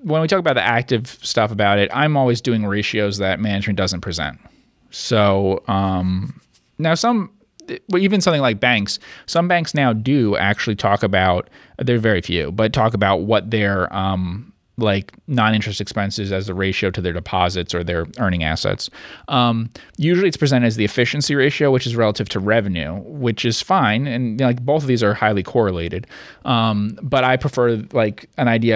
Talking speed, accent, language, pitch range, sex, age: 180 wpm, American, English, 95-120 Hz, male, 30-49